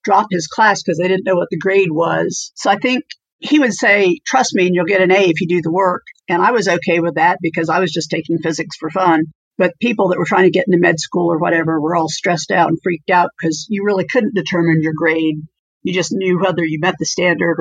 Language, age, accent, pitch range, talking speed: English, 50-69, American, 170-195 Hz, 260 wpm